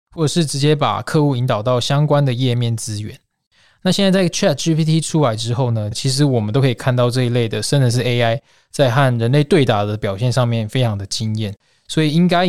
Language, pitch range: Chinese, 115-145 Hz